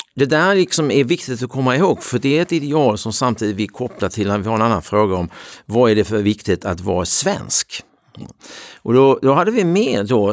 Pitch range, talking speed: 95-135 Hz, 225 wpm